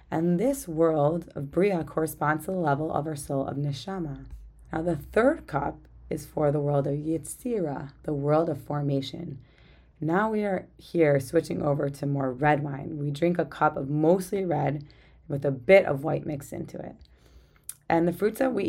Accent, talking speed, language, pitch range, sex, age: American, 185 wpm, English, 140-165 Hz, female, 30-49